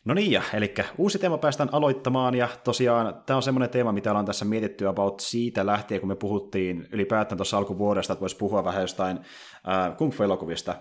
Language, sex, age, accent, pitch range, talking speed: Finnish, male, 30-49, native, 95-110 Hz, 185 wpm